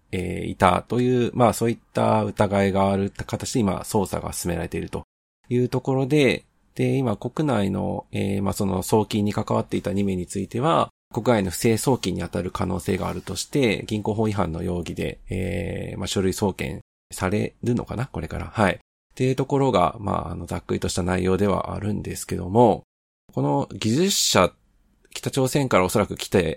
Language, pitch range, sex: Japanese, 95-115 Hz, male